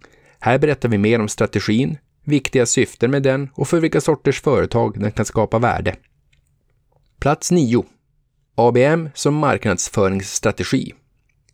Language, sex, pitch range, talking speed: Swedish, male, 110-135 Hz, 125 wpm